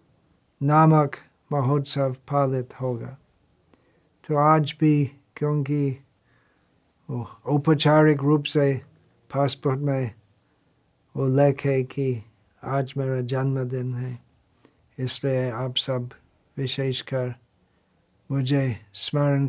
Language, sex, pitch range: Hindi, male, 125-150 Hz